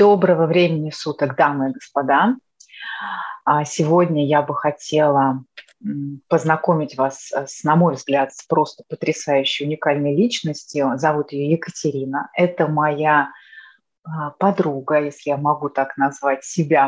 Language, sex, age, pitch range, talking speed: Russian, female, 30-49, 145-175 Hz, 115 wpm